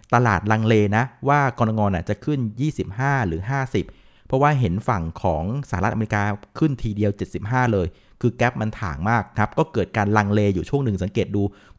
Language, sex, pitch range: Thai, male, 100-130 Hz